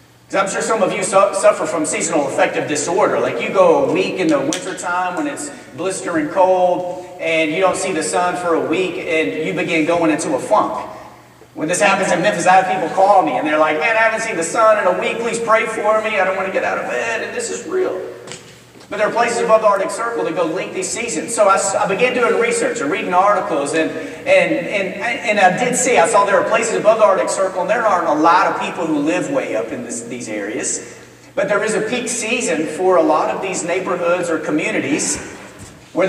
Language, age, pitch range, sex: English, 40-59, 175-230 Hz, male